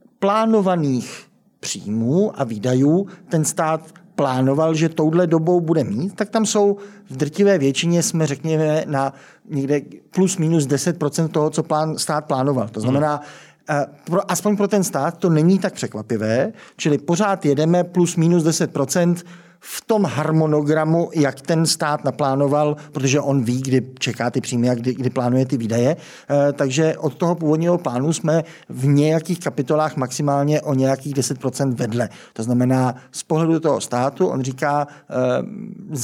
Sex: male